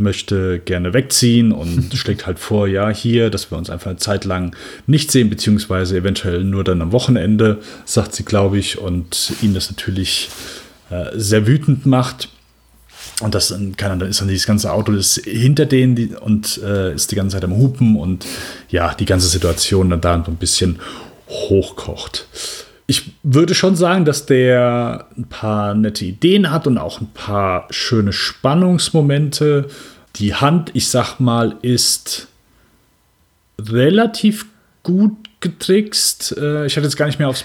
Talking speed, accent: 165 wpm, German